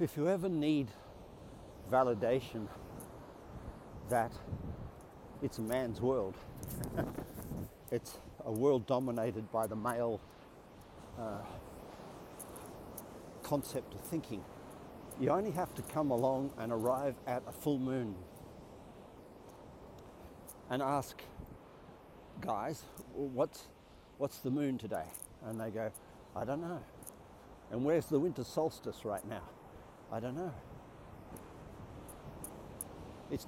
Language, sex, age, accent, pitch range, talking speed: English, male, 50-69, Australian, 110-155 Hz, 105 wpm